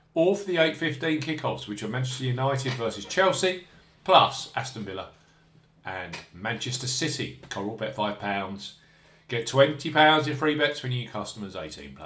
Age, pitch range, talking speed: 50-69, 110-150 Hz, 150 wpm